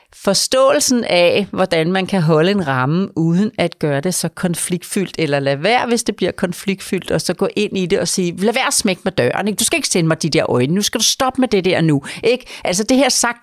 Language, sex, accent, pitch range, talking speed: Danish, female, native, 175-235 Hz, 260 wpm